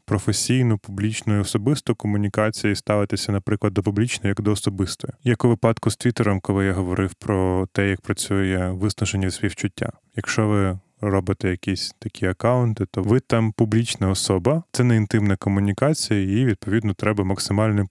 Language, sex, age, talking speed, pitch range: Ukrainian, male, 20-39, 155 wpm, 100-115 Hz